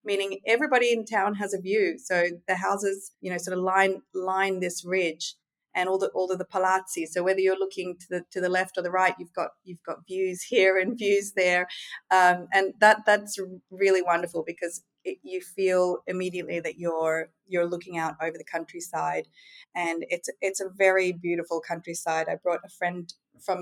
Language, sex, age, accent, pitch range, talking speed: English, female, 30-49, Australian, 175-200 Hz, 195 wpm